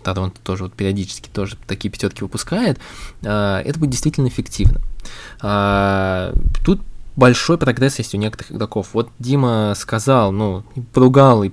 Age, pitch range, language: 20-39, 105-135 Hz, Russian